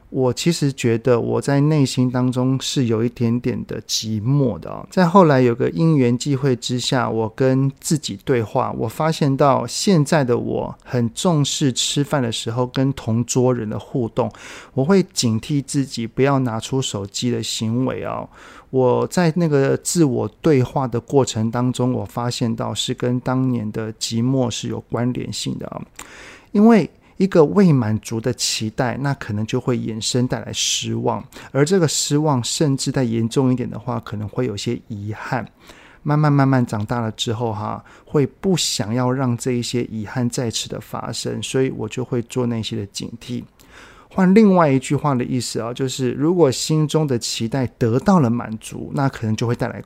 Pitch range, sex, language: 115-140 Hz, male, Chinese